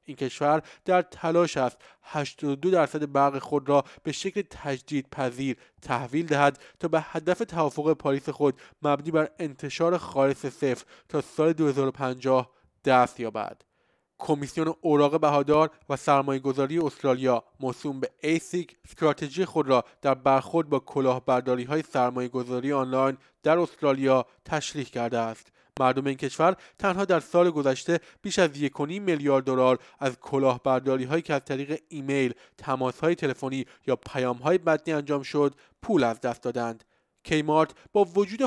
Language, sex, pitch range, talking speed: Persian, male, 130-160 Hz, 140 wpm